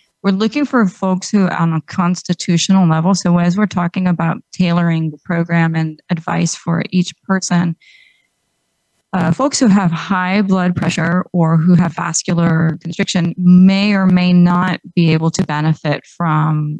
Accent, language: American, English